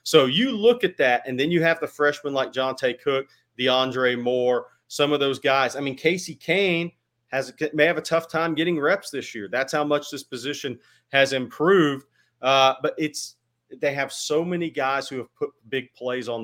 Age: 40-59